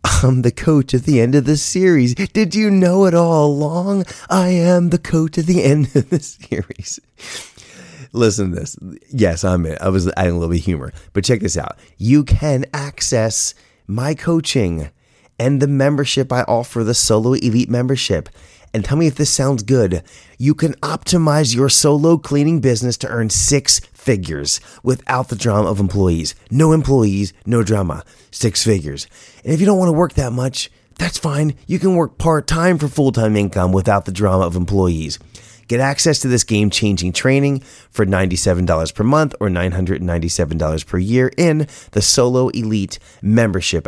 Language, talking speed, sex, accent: English, 175 wpm, male, American